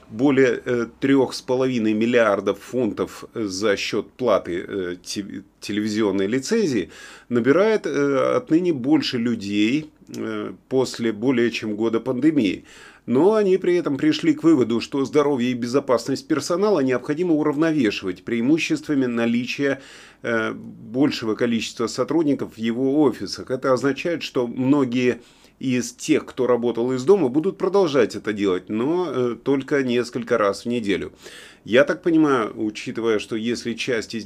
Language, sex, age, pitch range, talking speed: Russian, male, 30-49, 110-140 Hz, 120 wpm